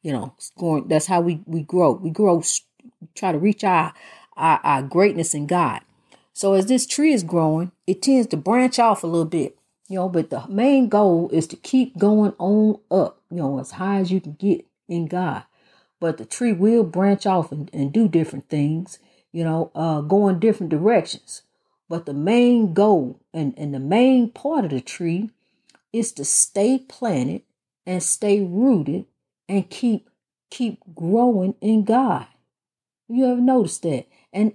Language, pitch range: English, 170-245 Hz